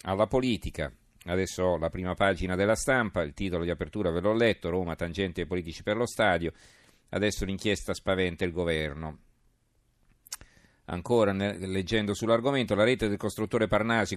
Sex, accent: male, native